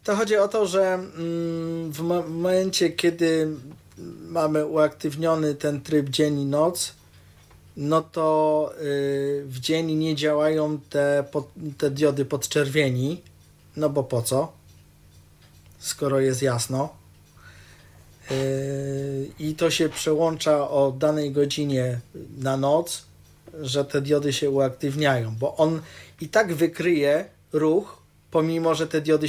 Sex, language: male, Polish